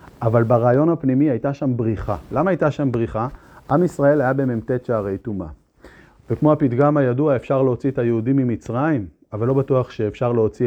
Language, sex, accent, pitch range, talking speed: Hebrew, male, native, 120-165 Hz, 165 wpm